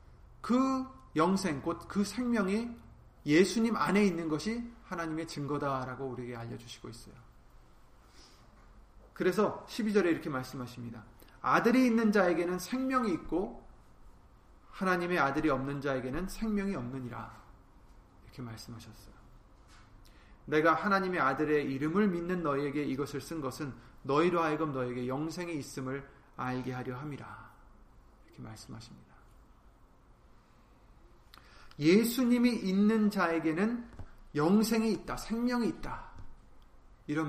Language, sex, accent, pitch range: Korean, male, native, 125-200 Hz